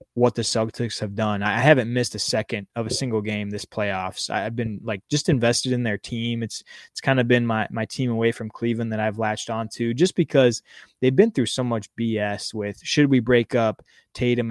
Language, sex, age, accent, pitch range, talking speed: English, male, 20-39, American, 110-125 Hz, 225 wpm